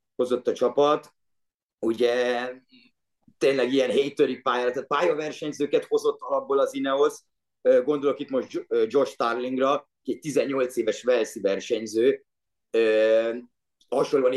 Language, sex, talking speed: Hungarian, male, 105 wpm